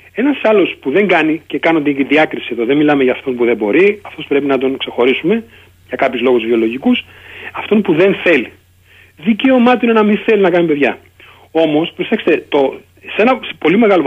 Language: Greek